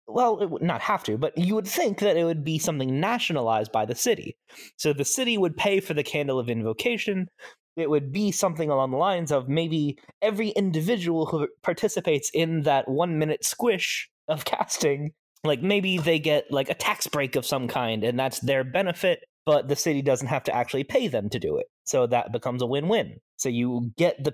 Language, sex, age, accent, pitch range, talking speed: English, male, 20-39, American, 140-205 Hz, 210 wpm